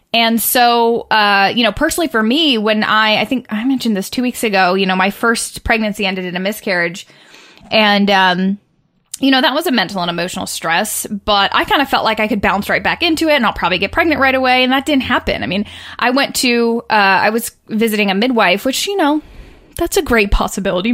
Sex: female